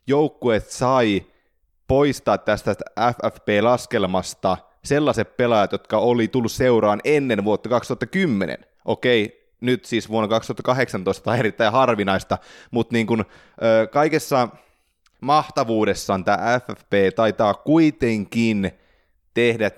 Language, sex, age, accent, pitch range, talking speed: Finnish, male, 20-39, native, 100-130 Hz, 95 wpm